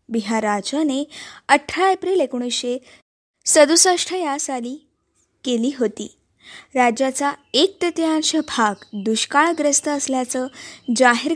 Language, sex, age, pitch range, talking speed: Marathi, female, 20-39, 225-300 Hz, 90 wpm